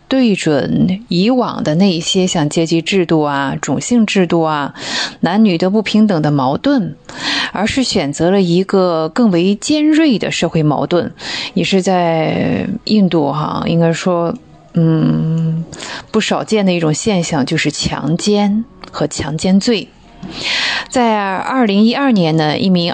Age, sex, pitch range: 20-39, female, 165-220 Hz